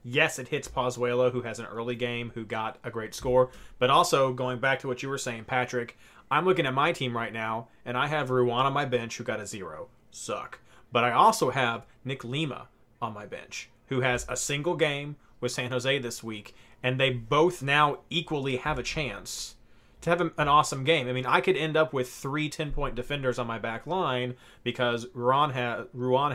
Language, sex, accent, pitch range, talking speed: English, male, American, 120-140 Hz, 205 wpm